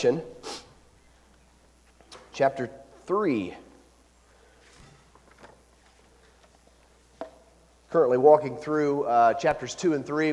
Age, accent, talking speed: 40-59, American, 60 wpm